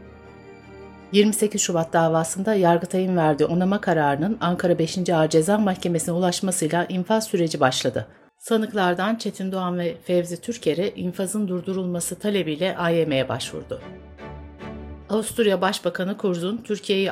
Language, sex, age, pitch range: Turkish, female, 60-79, 160-200 Hz